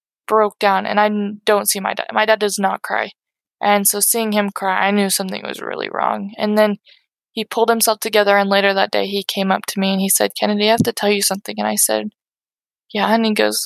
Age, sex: 20-39, female